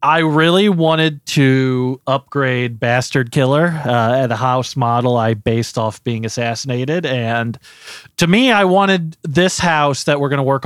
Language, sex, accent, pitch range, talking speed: English, male, American, 120-155 Hz, 165 wpm